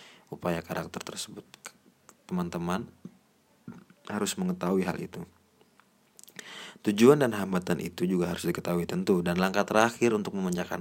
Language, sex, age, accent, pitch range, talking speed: Indonesian, male, 30-49, native, 85-115 Hz, 115 wpm